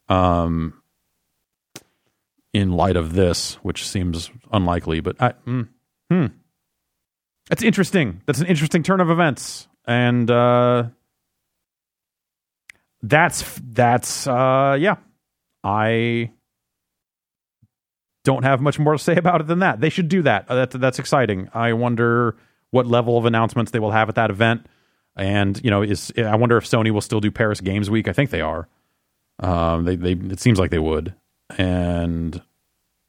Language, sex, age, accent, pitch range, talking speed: English, male, 30-49, American, 90-120 Hz, 150 wpm